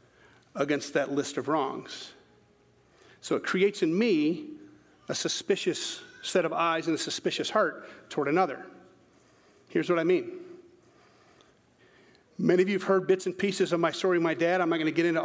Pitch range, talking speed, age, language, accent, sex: 160-205 Hz, 175 wpm, 40-59, English, American, male